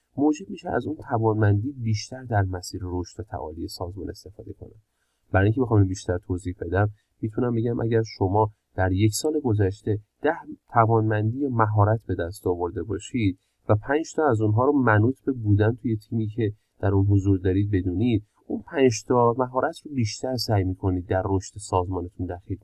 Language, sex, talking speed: Persian, male, 170 wpm